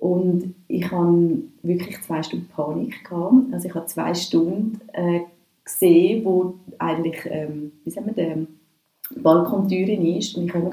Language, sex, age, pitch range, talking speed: German, female, 30-49, 170-210 Hz, 150 wpm